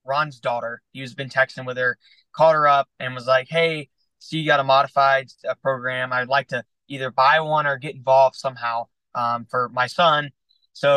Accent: American